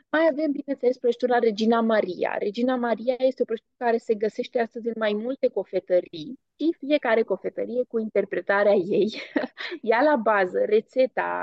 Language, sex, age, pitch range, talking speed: English, female, 20-39, 210-260 Hz, 150 wpm